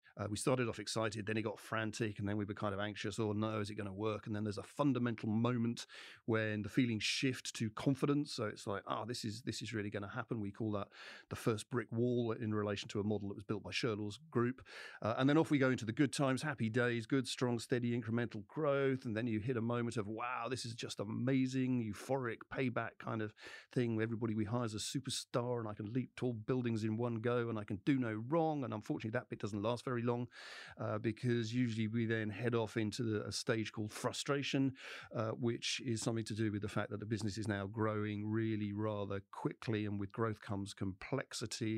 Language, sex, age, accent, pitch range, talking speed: English, male, 40-59, British, 105-125 Hz, 235 wpm